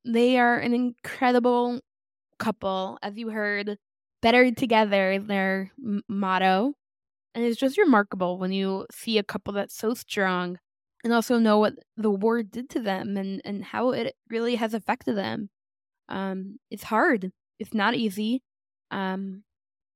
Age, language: 10-29, English